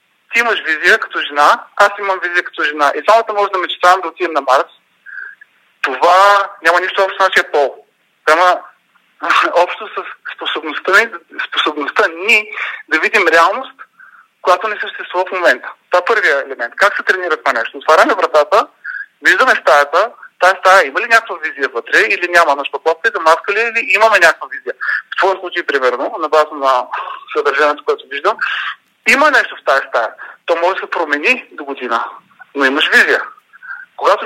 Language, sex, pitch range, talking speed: Bulgarian, male, 175-280 Hz, 175 wpm